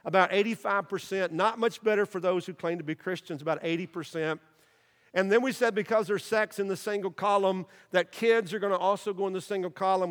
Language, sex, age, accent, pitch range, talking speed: English, male, 50-69, American, 165-205 Hz, 215 wpm